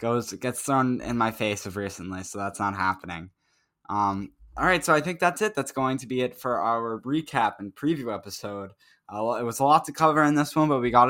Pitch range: 105-130 Hz